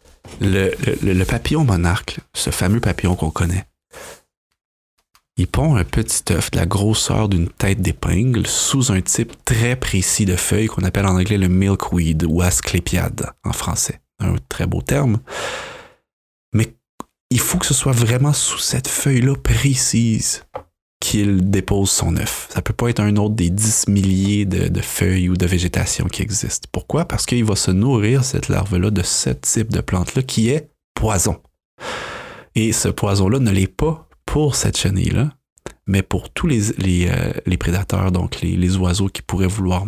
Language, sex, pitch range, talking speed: French, male, 90-115 Hz, 175 wpm